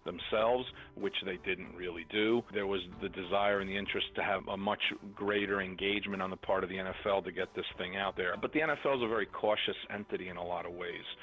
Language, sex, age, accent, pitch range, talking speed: English, male, 40-59, American, 95-105 Hz, 235 wpm